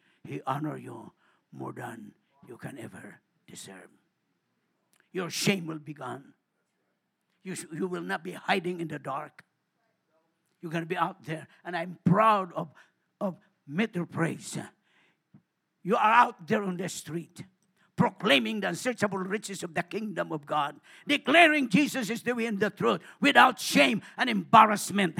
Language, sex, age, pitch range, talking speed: English, male, 50-69, 170-225 Hz, 150 wpm